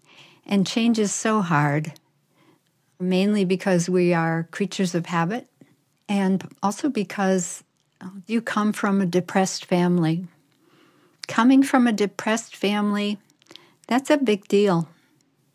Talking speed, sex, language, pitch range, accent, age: 115 wpm, female, English, 170-205 Hz, American, 60-79